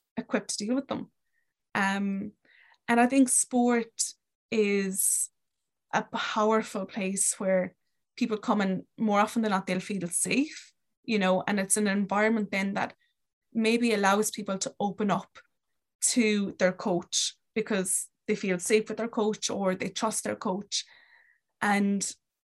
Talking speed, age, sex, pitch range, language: 145 wpm, 20-39, female, 195-225 Hz, English